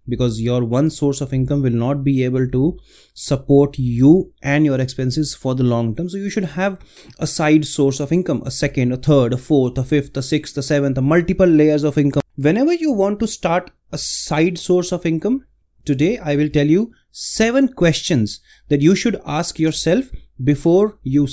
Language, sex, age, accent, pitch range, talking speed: English, male, 30-49, Indian, 140-190 Hz, 195 wpm